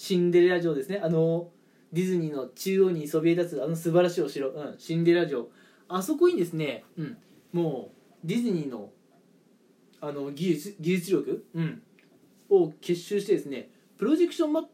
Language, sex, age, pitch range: Japanese, male, 20-39, 165-250 Hz